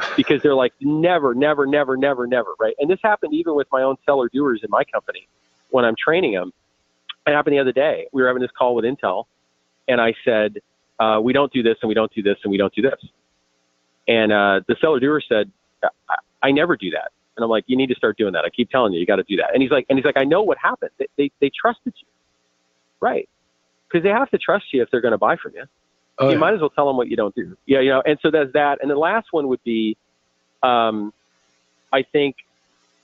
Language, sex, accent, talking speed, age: English, male, American, 250 wpm, 40-59